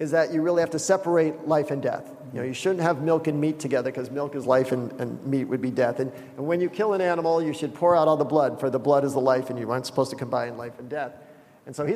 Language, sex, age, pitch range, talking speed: English, male, 40-59, 150-205 Hz, 305 wpm